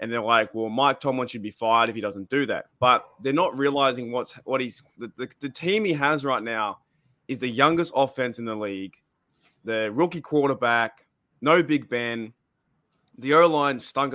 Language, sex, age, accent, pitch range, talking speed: English, male, 20-39, Australian, 125-160 Hz, 190 wpm